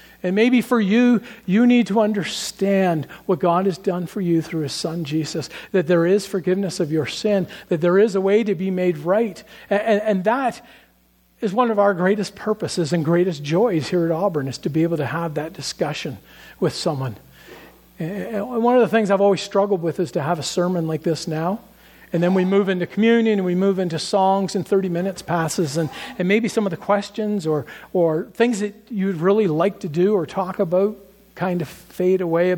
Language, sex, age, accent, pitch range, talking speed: English, male, 50-69, American, 165-200 Hz, 215 wpm